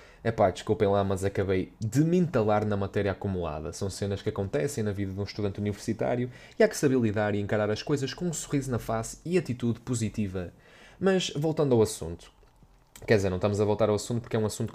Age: 20-39